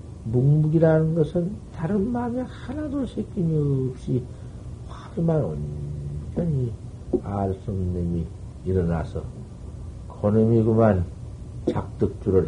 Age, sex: 50-69, male